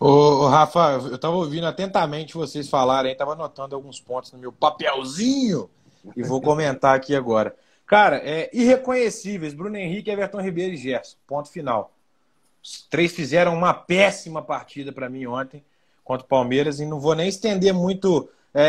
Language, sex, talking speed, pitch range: Portuguese, male, 160 wpm, 150-195 Hz